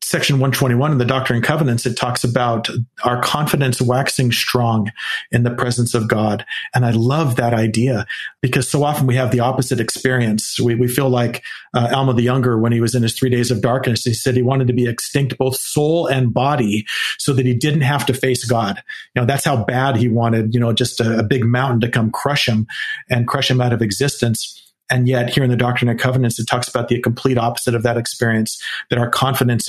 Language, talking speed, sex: English, 225 wpm, male